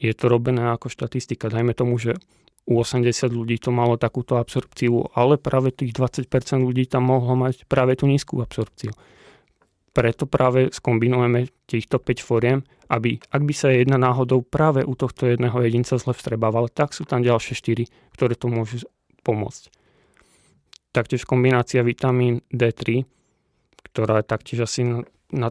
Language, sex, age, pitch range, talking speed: Czech, male, 30-49, 120-130 Hz, 150 wpm